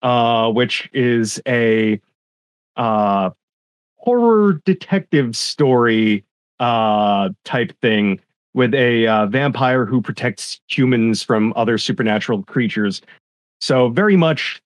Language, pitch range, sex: English, 110-140 Hz, male